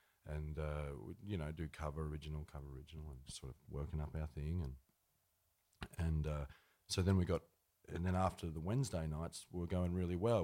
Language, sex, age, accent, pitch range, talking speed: English, male, 30-49, Australian, 80-95 Hz, 190 wpm